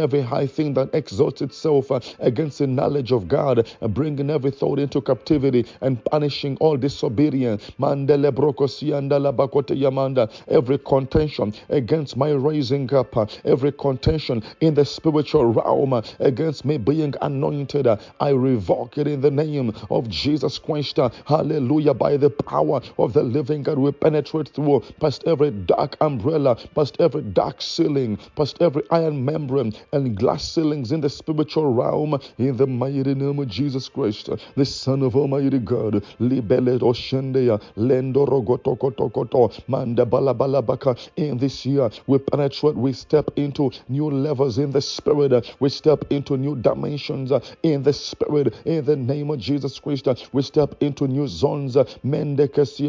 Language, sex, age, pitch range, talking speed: English, male, 50-69, 130-150 Hz, 140 wpm